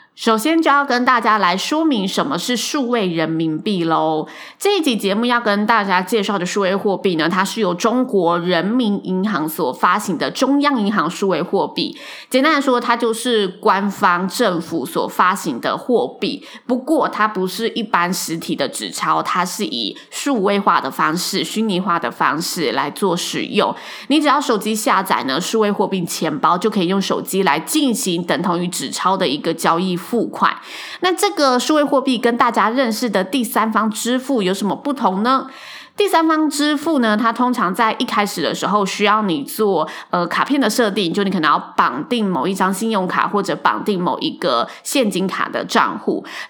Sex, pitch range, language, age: female, 185-255 Hz, Chinese, 20-39